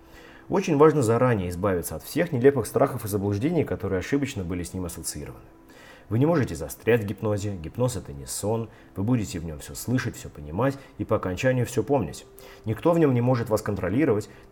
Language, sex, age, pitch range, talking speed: Russian, male, 30-49, 90-125 Hz, 190 wpm